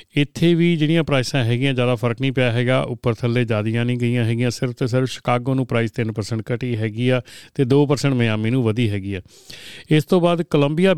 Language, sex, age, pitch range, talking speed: Punjabi, male, 40-59, 120-145 Hz, 195 wpm